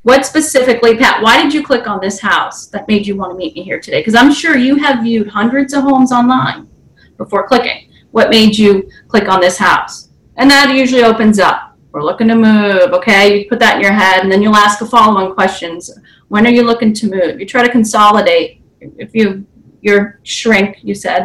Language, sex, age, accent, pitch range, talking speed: English, female, 30-49, American, 205-275 Hz, 215 wpm